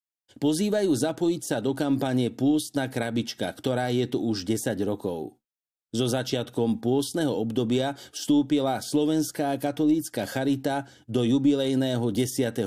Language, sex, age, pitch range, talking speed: Slovak, male, 50-69, 115-150 Hz, 120 wpm